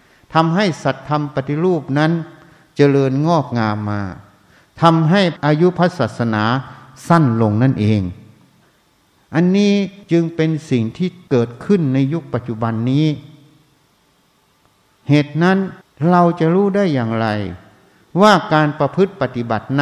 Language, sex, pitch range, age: Thai, male, 130-170 Hz, 60-79